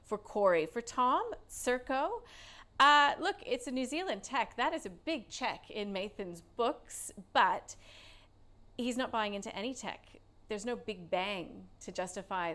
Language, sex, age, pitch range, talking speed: English, female, 40-59, 175-230 Hz, 160 wpm